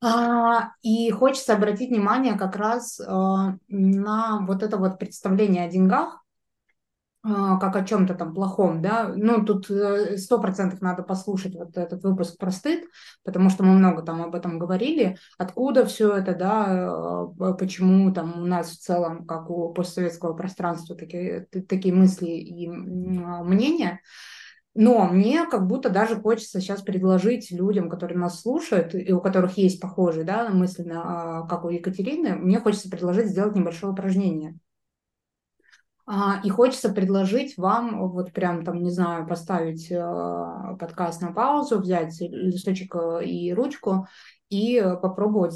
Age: 20-39